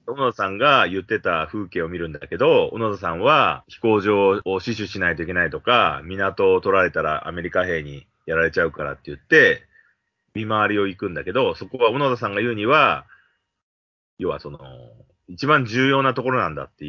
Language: Japanese